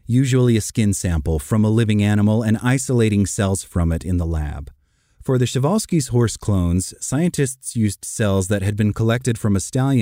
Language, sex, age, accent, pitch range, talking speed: English, male, 30-49, American, 95-125 Hz, 190 wpm